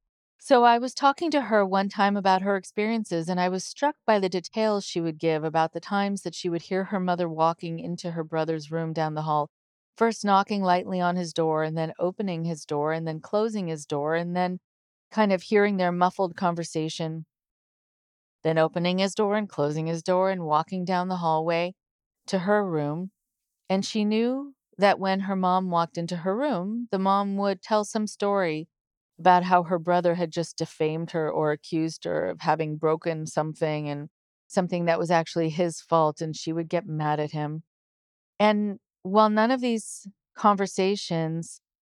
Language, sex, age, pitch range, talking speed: English, female, 40-59, 160-195 Hz, 185 wpm